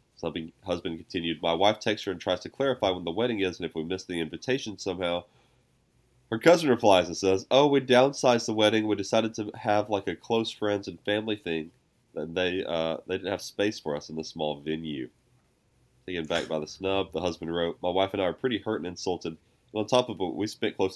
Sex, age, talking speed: male, 20-39, 235 wpm